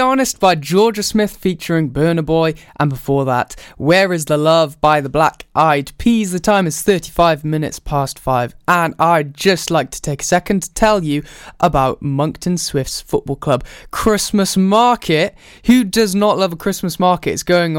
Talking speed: 180 wpm